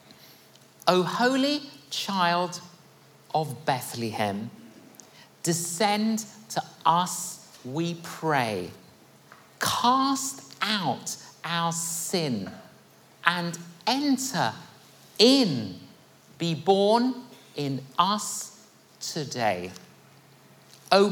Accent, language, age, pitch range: British, English, 50-69, 150-210 Hz